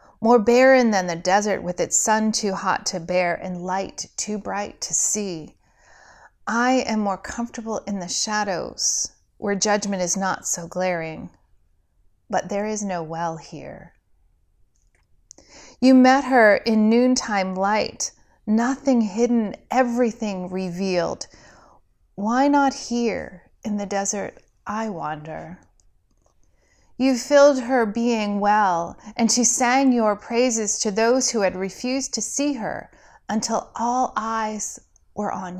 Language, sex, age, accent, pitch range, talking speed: English, female, 30-49, American, 170-235 Hz, 130 wpm